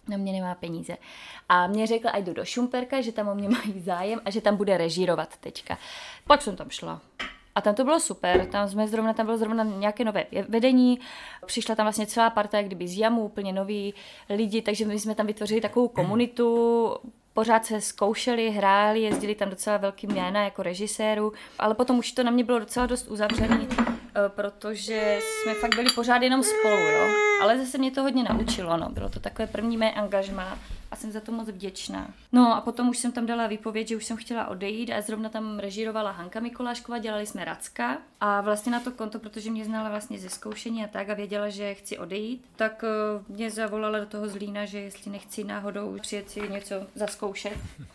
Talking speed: 200 wpm